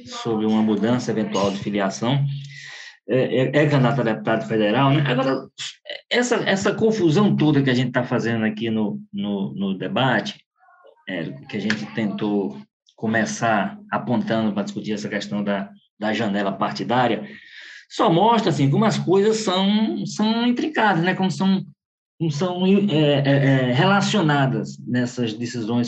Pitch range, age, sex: 110-175 Hz, 20-39, male